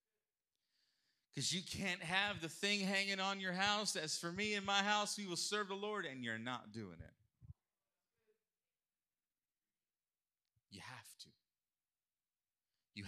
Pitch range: 105-150 Hz